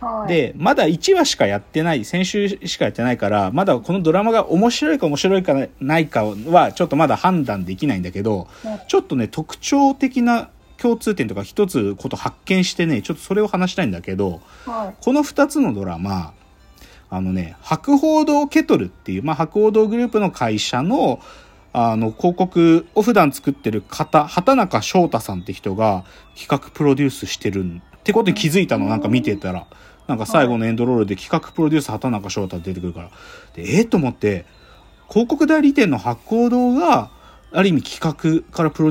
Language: Japanese